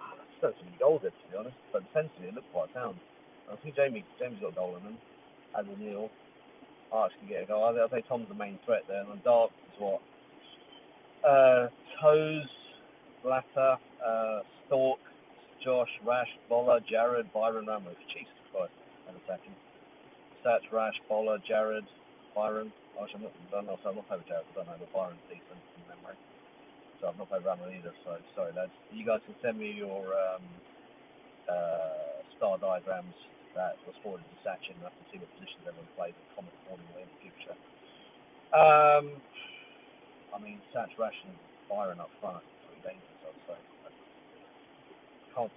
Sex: male